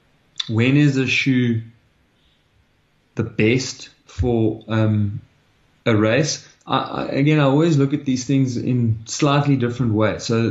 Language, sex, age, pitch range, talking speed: English, male, 20-39, 110-130 Hz, 135 wpm